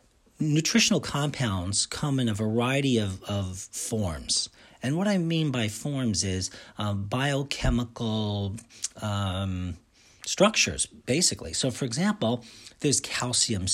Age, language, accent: 40-59, English, American